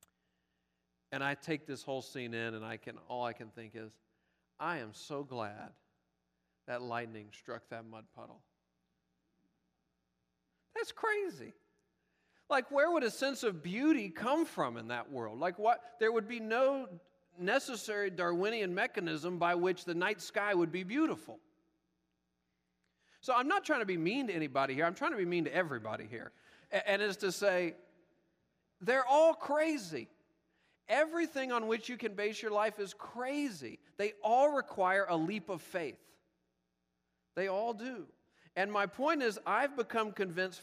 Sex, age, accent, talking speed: male, 40-59, American, 160 wpm